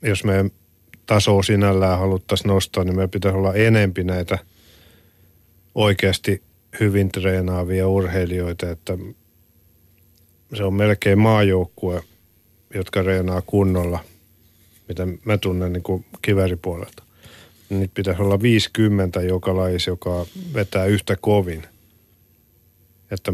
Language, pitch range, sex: Finnish, 90-100 Hz, male